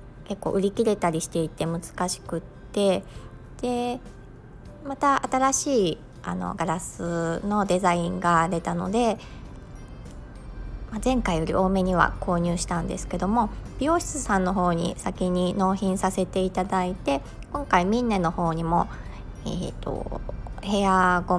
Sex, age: male, 20-39